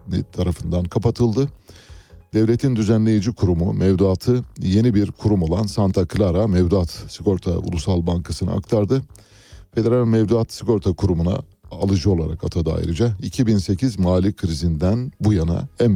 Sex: male